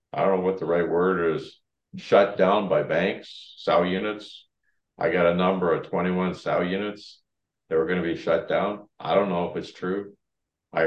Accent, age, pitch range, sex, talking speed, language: American, 50-69, 90-100 Hz, male, 200 wpm, English